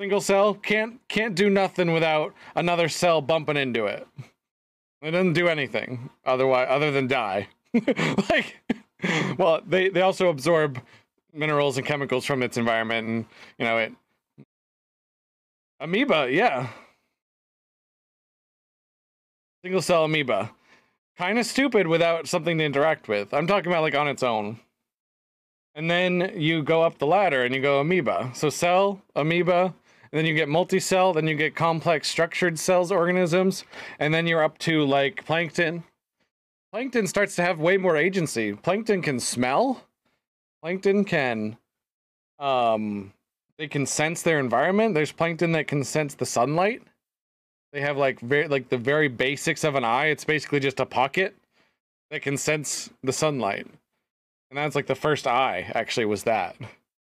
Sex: male